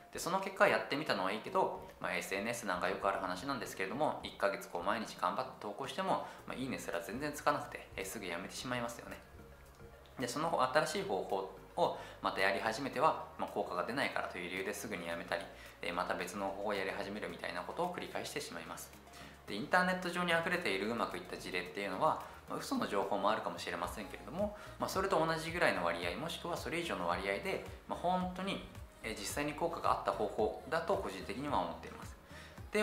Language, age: Japanese, 20-39